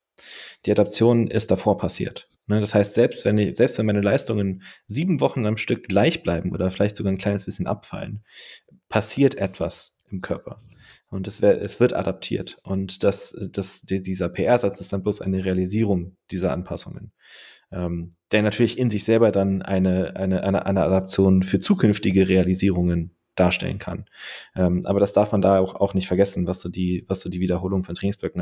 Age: 30-49